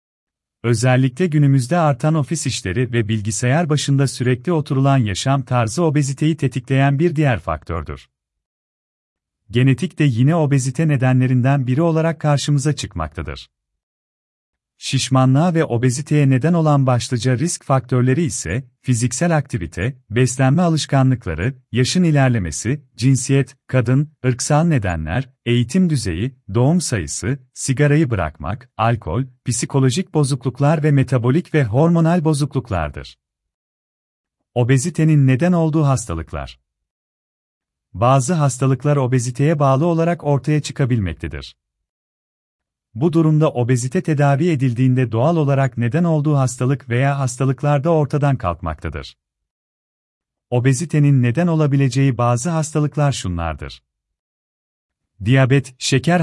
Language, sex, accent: Turkish, male, native